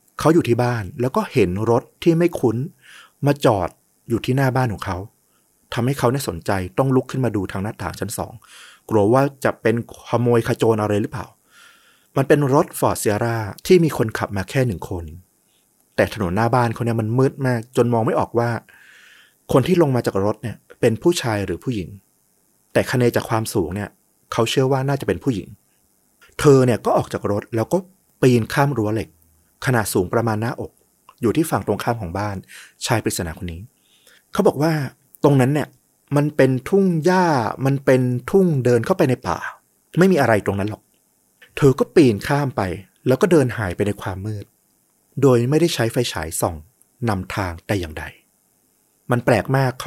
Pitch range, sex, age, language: 105-135 Hz, male, 30-49, Thai